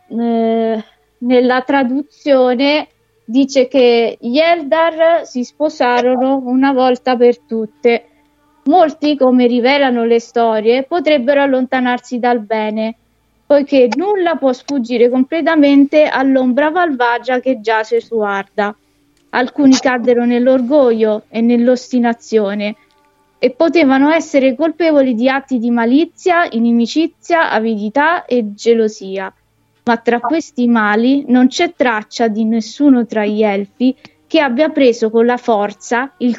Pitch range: 230-280 Hz